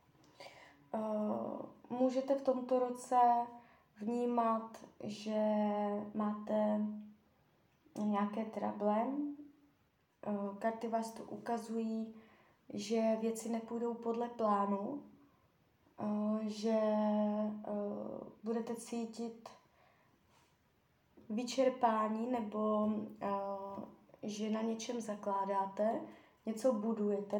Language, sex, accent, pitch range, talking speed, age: Czech, female, native, 210-245 Hz, 75 wpm, 20-39